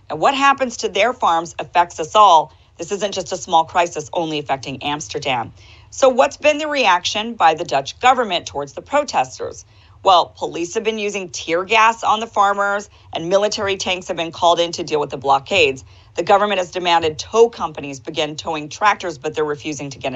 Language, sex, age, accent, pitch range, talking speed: English, female, 40-59, American, 155-205 Hz, 195 wpm